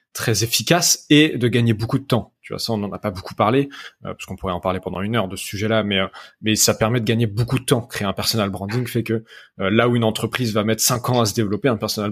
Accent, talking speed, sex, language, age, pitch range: French, 290 wpm, male, French, 20-39, 105-135 Hz